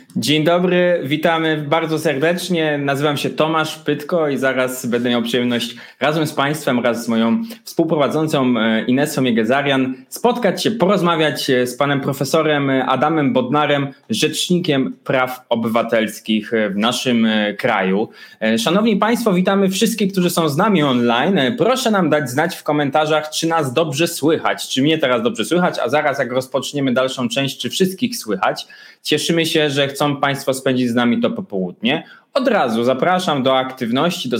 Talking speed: 150 wpm